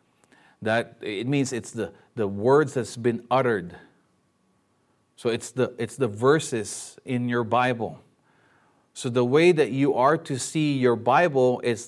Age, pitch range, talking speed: 30-49, 110-135 Hz, 150 wpm